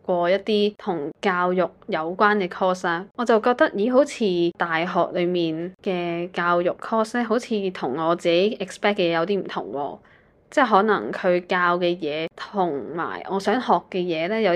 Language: Chinese